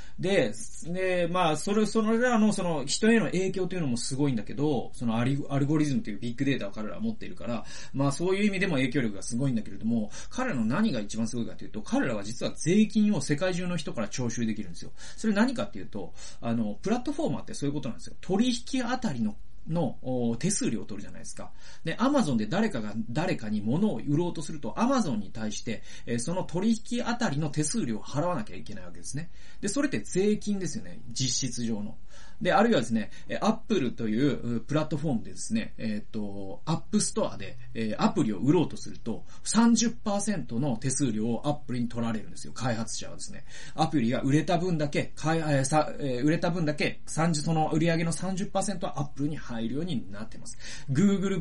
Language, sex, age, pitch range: Japanese, male, 30-49, 115-185 Hz